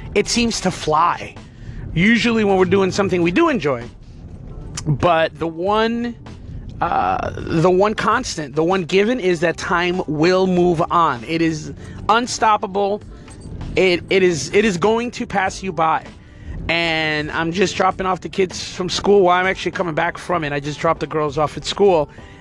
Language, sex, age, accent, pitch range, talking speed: English, male, 30-49, American, 160-255 Hz, 175 wpm